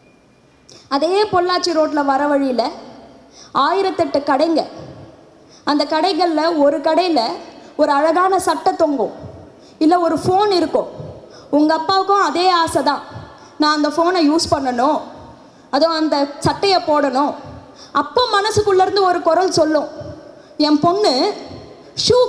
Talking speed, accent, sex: 110 wpm, native, female